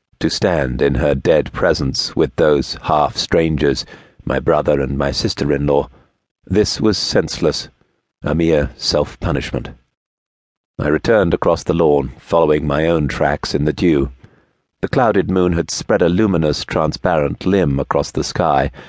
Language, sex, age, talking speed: English, male, 50-69, 140 wpm